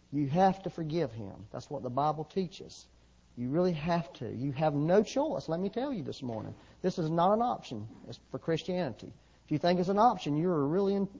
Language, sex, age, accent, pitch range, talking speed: English, male, 40-59, American, 135-200 Hz, 225 wpm